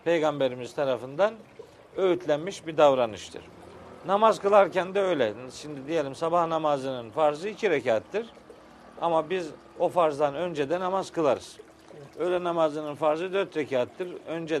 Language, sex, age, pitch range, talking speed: Turkish, male, 50-69, 145-185 Hz, 125 wpm